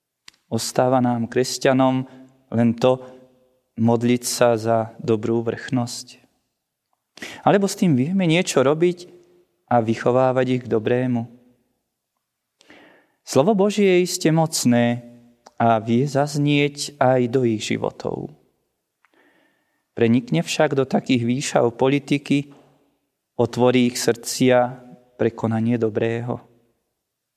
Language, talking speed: Slovak, 95 wpm